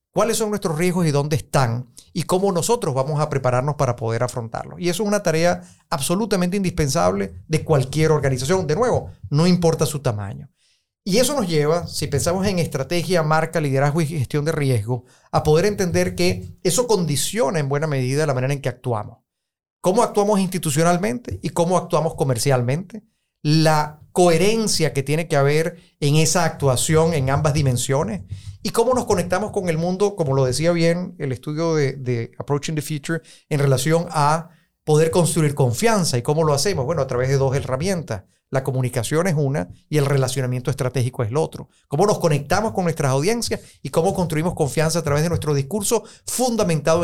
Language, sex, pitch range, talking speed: Spanish, male, 140-180 Hz, 180 wpm